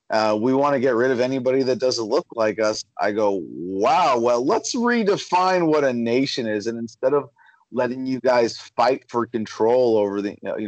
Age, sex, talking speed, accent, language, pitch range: 30-49, male, 195 wpm, American, English, 110-150 Hz